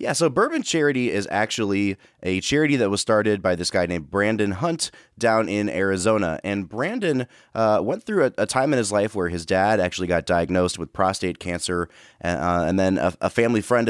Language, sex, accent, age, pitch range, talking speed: English, male, American, 30-49, 90-115 Hz, 205 wpm